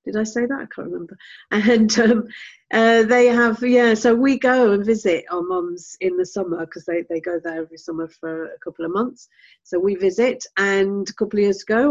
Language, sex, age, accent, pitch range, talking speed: English, female, 40-59, British, 180-225 Hz, 220 wpm